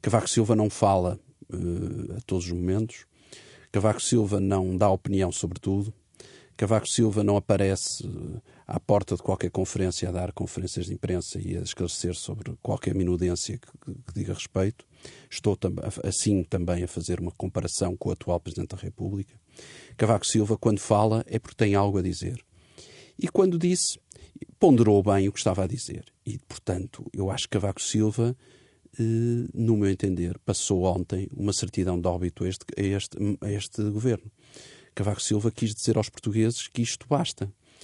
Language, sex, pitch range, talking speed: Portuguese, male, 95-115 Hz, 160 wpm